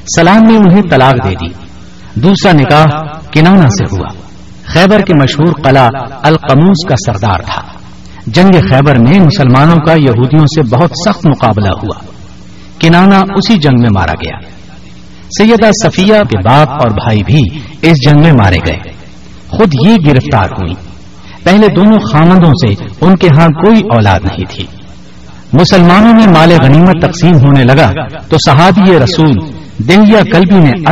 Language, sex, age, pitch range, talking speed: Urdu, male, 60-79, 115-180 Hz, 145 wpm